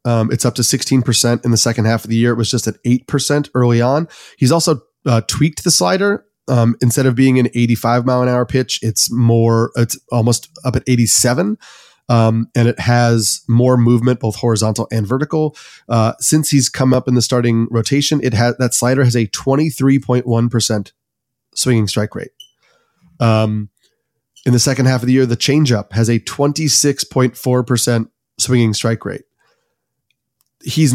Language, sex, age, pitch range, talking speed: English, male, 30-49, 115-135 Hz, 170 wpm